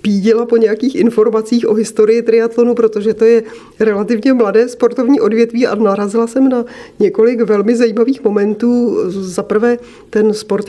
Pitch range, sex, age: 205-235 Hz, female, 40-59